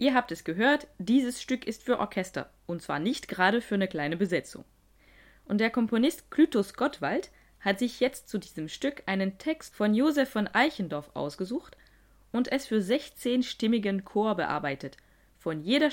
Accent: German